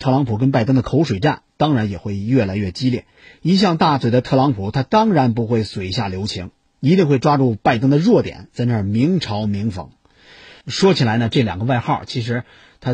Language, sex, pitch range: Chinese, male, 115-150 Hz